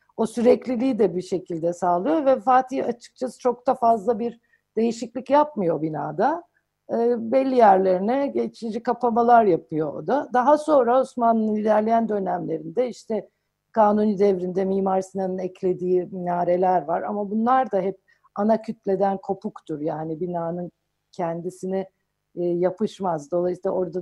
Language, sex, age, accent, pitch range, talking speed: Turkish, female, 50-69, native, 185-235 Hz, 125 wpm